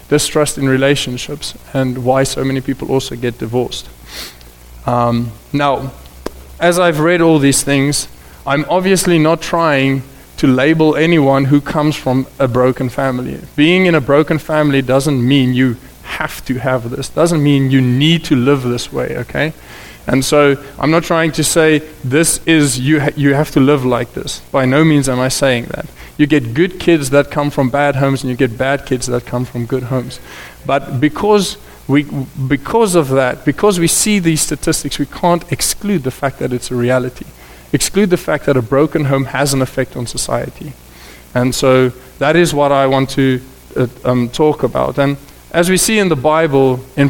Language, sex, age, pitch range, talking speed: English, male, 20-39, 130-155 Hz, 185 wpm